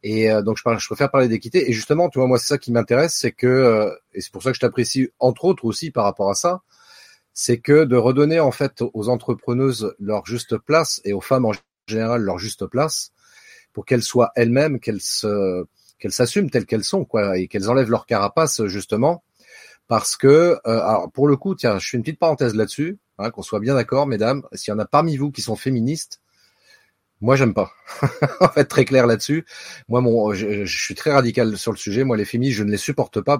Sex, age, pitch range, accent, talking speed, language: male, 30-49, 110-145 Hz, French, 225 wpm, French